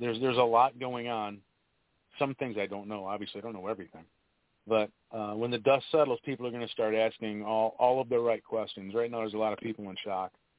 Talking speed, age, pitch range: 245 wpm, 40-59, 110-140 Hz